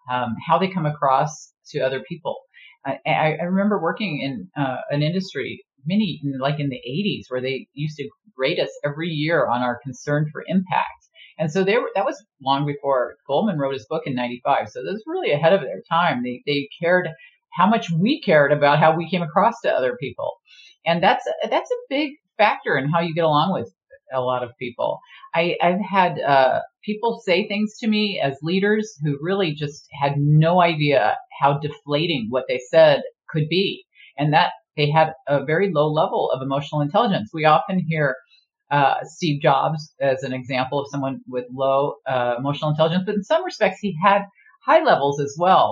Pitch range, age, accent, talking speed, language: 135-195 Hz, 40-59, American, 195 wpm, English